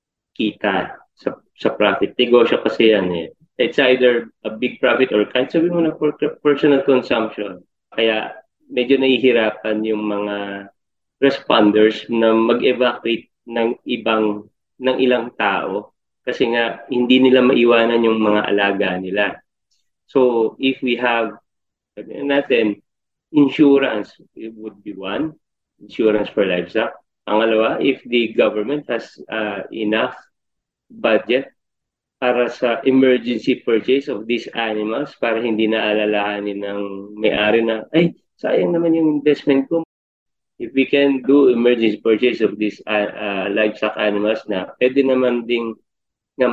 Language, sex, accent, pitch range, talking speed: Filipino, male, native, 105-130 Hz, 125 wpm